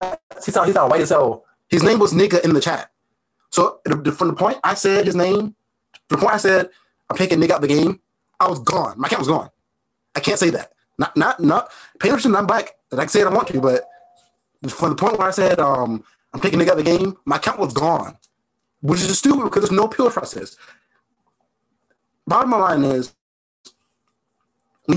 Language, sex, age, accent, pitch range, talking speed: English, male, 30-49, American, 135-190 Hz, 215 wpm